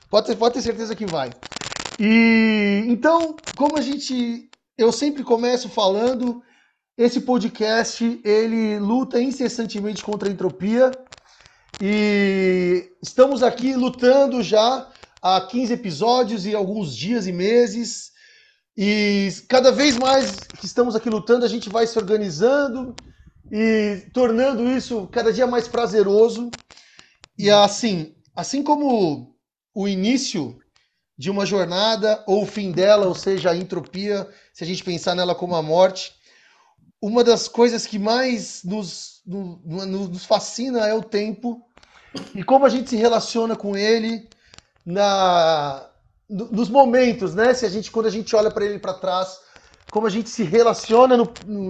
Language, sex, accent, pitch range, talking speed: Portuguese, male, Brazilian, 195-240 Hz, 145 wpm